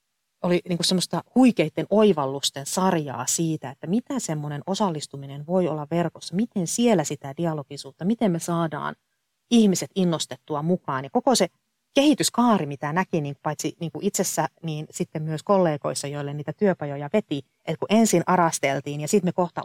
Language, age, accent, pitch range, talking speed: Finnish, 30-49, native, 145-175 Hz, 160 wpm